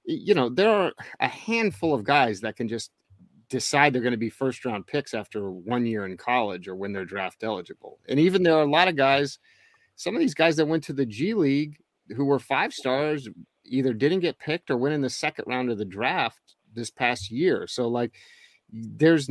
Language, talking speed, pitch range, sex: English, 220 wpm, 110-150 Hz, male